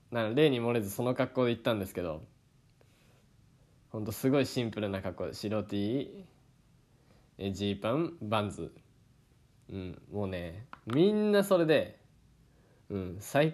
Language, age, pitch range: Japanese, 20-39, 105-145 Hz